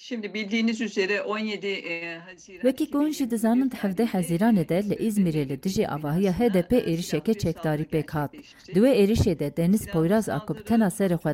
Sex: female